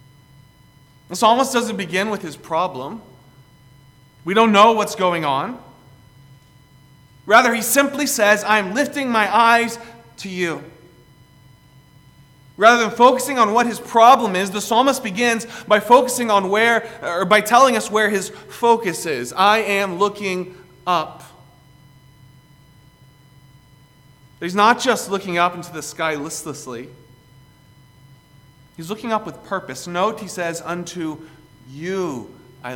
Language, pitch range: English, 140-225 Hz